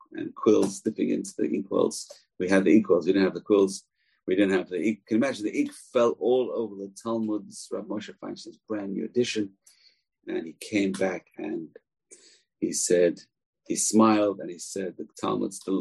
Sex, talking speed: male, 200 wpm